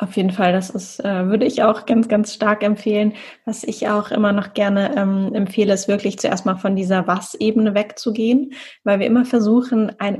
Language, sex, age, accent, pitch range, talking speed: German, female, 10-29, German, 185-210 Hz, 200 wpm